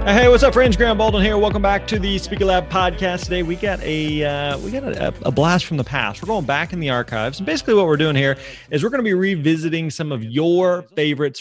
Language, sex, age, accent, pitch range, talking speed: English, male, 30-49, American, 125-165 Hz, 260 wpm